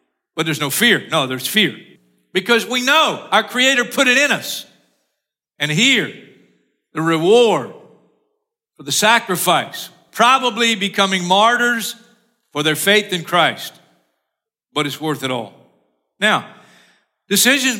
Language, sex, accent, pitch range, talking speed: English, male, American, 165-220 Hz, 130 wpm